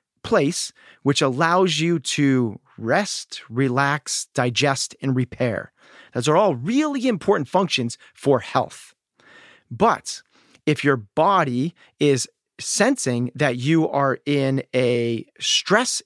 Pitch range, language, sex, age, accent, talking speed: 125-155 Hz, English, male, 40-59, American, 110 wpm